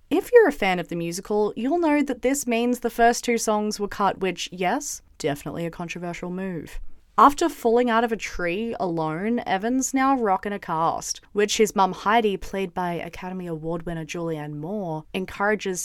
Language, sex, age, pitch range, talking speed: English, female, 20-39, 175-240 Hz, 180 wpm